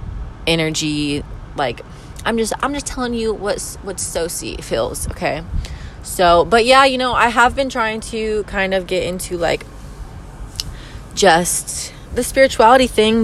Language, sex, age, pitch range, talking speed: English, female, 20-39, 160-220 Hz, 145 wpm